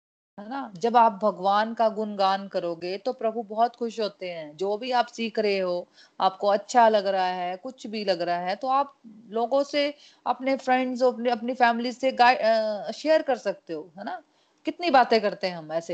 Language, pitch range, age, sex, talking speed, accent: Hindi, 190-245 Hz, 30-49, female, 120 wpm, native